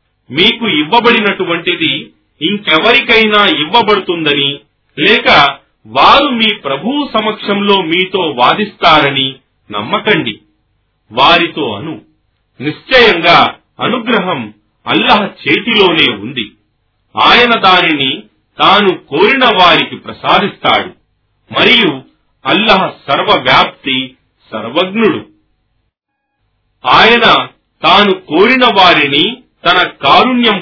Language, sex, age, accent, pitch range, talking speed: Telugu, male, 40-59, native, 145-225 Hz, 60 wpm